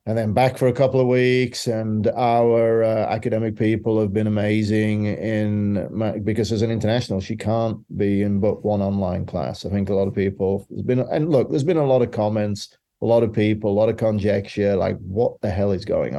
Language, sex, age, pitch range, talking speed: English, male, 30-49, 105-120 Hz, 220 wpm